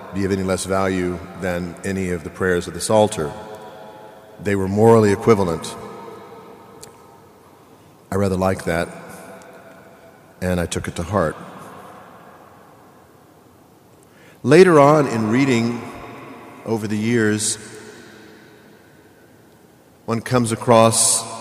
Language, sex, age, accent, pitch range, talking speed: English, male, 50-69, American, 90-115 Hz, 105 wpm